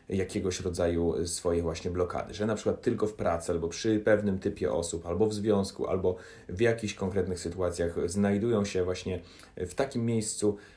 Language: Polish